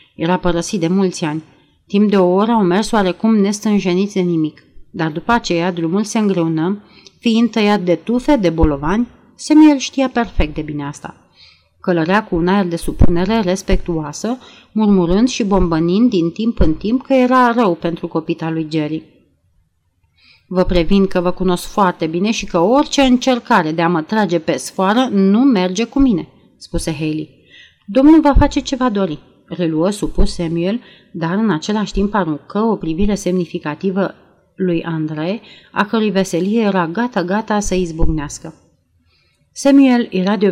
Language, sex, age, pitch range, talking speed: Romanian, female, 30-49, 170-220 Hz, 155 wpm